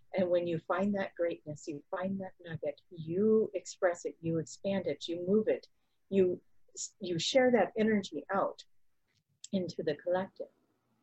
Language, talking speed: English, 150 wpm